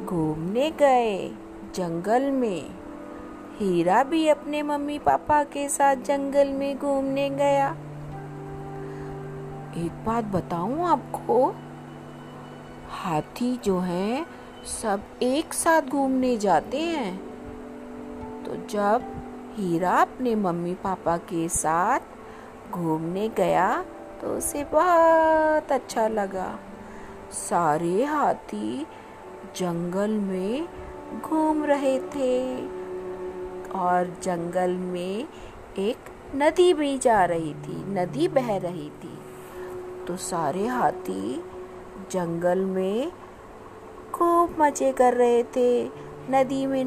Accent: native